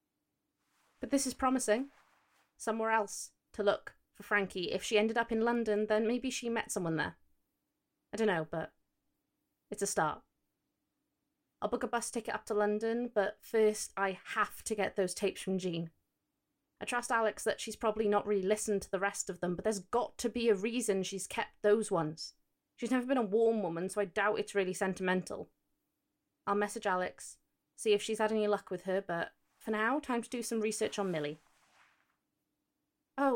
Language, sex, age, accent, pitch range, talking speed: English, female, 20-39, British, 185-225 Hz, 185 wpm